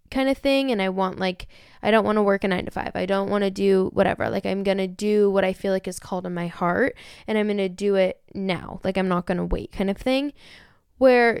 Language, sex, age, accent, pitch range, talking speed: English, female, 10-29, American, 195-235 Hz, 265 wpm